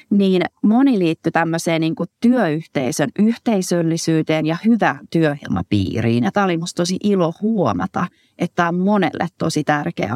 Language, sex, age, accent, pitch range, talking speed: Finnish, female, 30-49, native, 155-205 Hz, 130 wpm